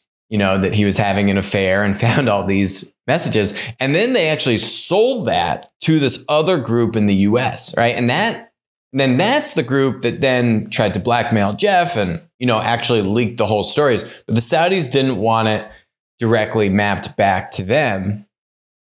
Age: 20-39